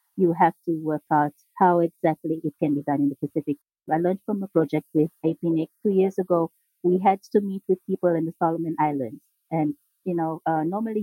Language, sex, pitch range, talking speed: English, female, 155-190 Hz, 210 wpm